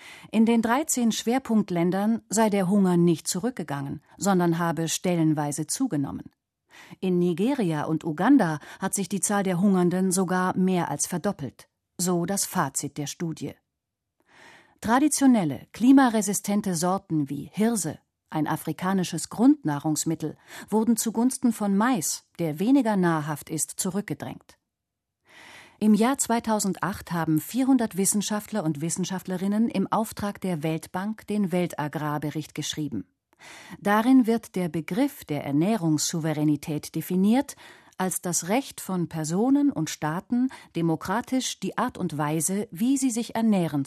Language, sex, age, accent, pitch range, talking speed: German, female, 40-59, German, 160-215 Hz, 120 wpm